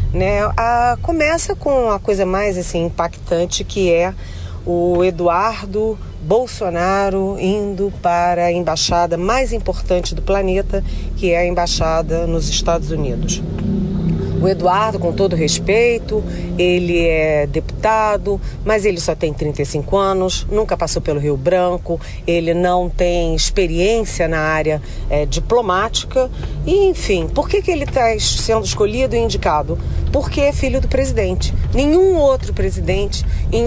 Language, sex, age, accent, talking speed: Portuguese, female, 40-59, Brazilian, 135 wpm